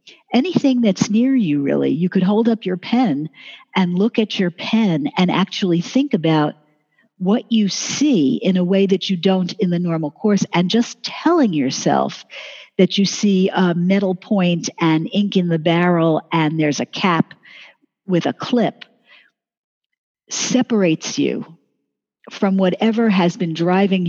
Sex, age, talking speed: female, 50-69, 155 wpm